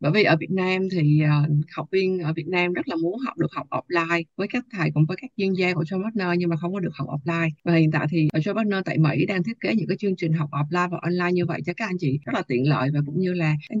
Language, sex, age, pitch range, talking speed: Vietnamese, female, 20-39, 155-190 Hz, 310 wpm